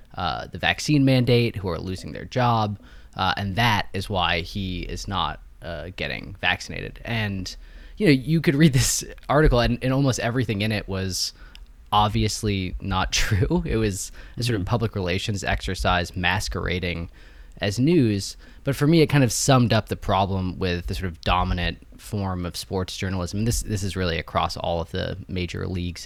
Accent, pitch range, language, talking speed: American, 90-115 Hz, English, 180 wpm